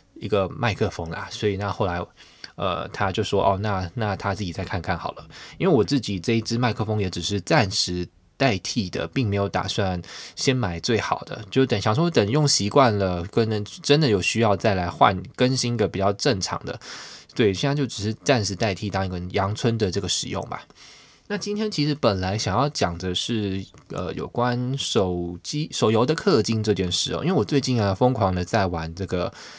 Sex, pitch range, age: male, 95-120 Hz, 20-39